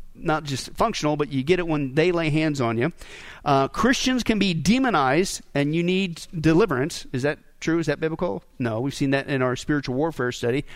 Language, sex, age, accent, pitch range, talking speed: English, male, 40-59, American, 145-185 Hz, 205 wpm